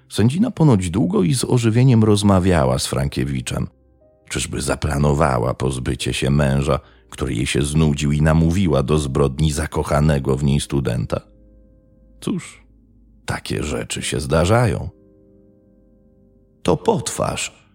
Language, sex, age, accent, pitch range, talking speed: Polish, male, 40-59, native, 75-110 Hz, 110 wpm